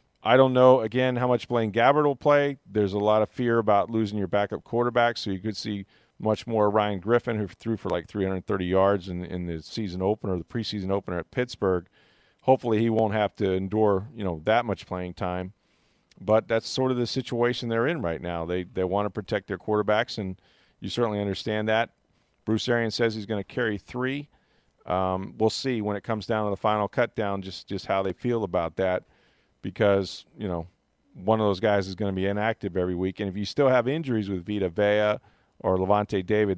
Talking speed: 215 wpm